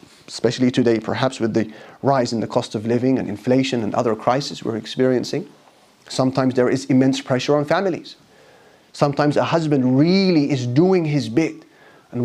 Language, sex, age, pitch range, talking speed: English, male, 30-49, 130-170 Hz, 165 wpm